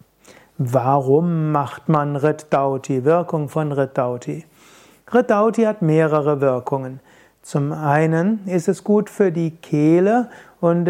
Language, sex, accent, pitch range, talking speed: German, male, German, 150-180 Hz, 110 wpm